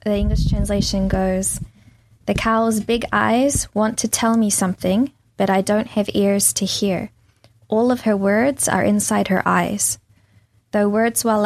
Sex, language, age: female, Korean, 10-29